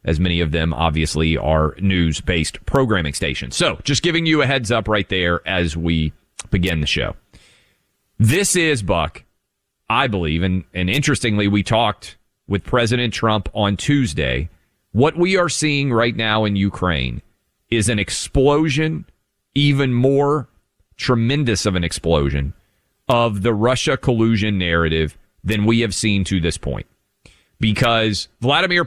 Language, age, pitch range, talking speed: English, 40-59, 95-130 Hz, 140 wpm